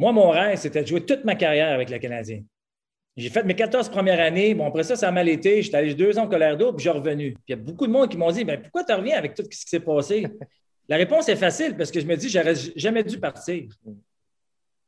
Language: French